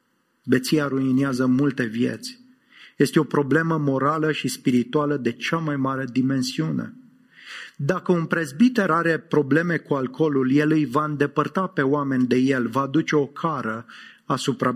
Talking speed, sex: 140 wpm, male